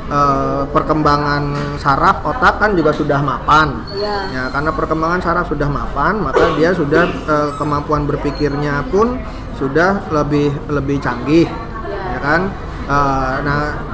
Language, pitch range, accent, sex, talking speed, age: English, 145-165 Hz, Indonesian, male, 125 wpm, 20-39